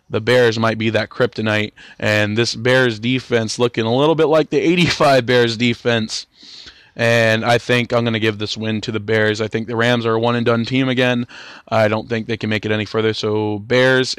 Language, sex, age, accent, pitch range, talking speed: English, male, 20-39, American, 110-130 Hz, 215 wpm